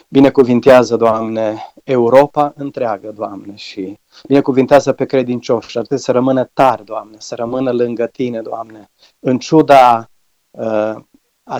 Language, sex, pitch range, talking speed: Romanian, male, 115-135 Hz, 130 wpm